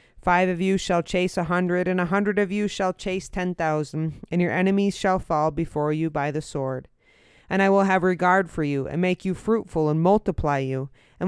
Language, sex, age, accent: English, female, 30-49, American